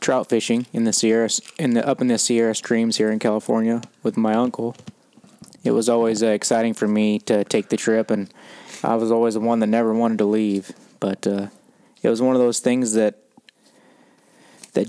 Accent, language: American, English